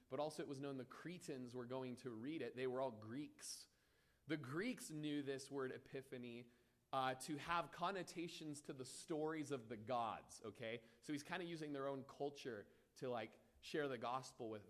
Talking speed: 190 wpm